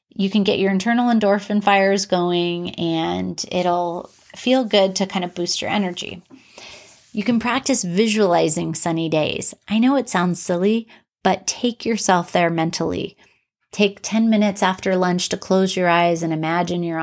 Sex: female